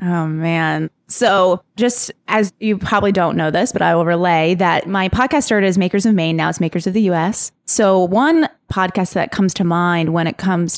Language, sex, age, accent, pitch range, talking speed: English, female, 20-39, American, 170-210 Hz, 210 wpm